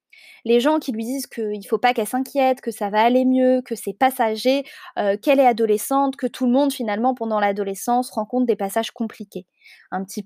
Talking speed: 210 wpm